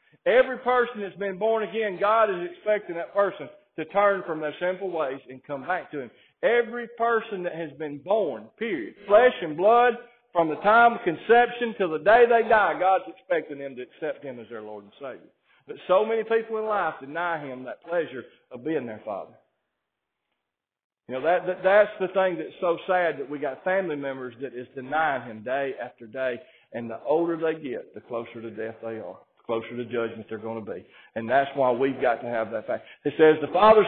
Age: 50-69